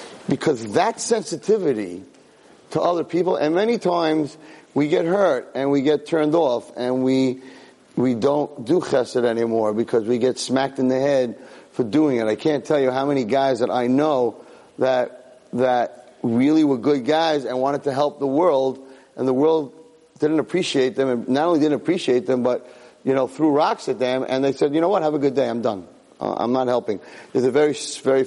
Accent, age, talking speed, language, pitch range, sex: American, 40-59, 200 wpm, English, 125-150 Hz, male